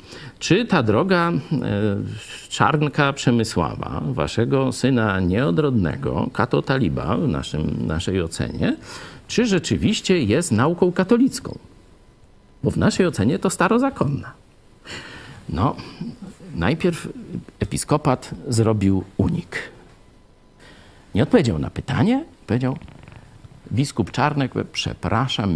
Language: Polish